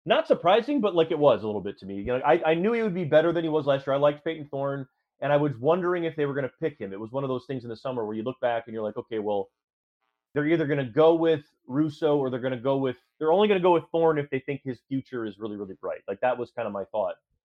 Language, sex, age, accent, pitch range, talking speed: English, male, 30-49, American, 110-155 Hz, 325 wpm